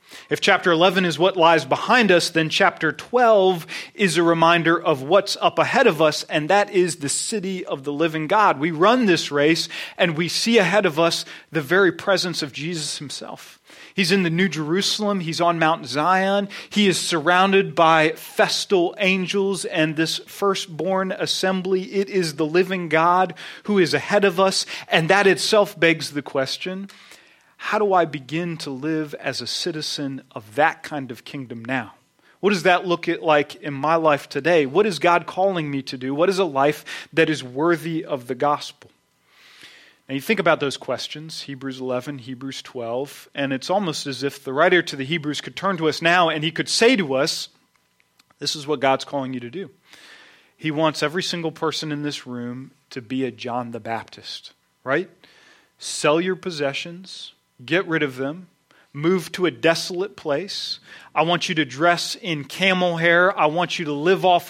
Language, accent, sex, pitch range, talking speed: English, American, male, 145-185 Hz, 185 wpm